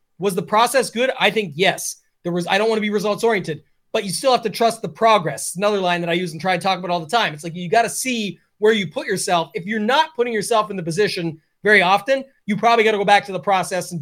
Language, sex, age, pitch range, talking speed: English, male, 30-49, 185-225 Hz, 290 wpm